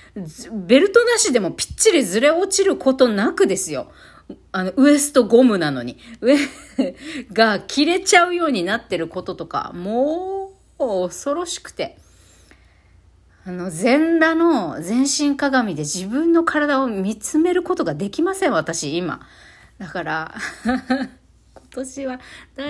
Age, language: 40-59, Japanese